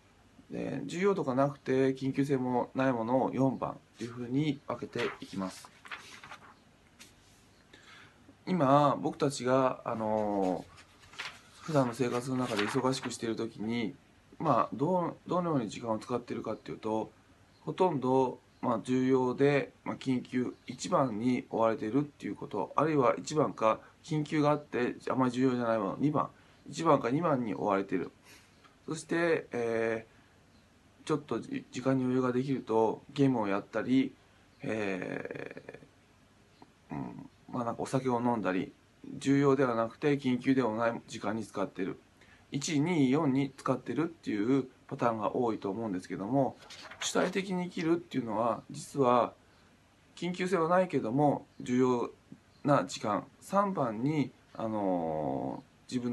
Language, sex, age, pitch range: Japanese, male, 20-39, 110-140 Hz